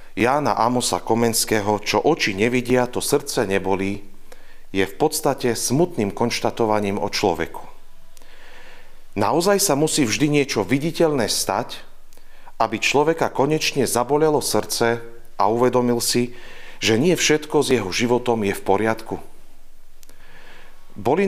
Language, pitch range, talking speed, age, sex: Slovak, 105-130 Hz, 115 wpm, 40-59, male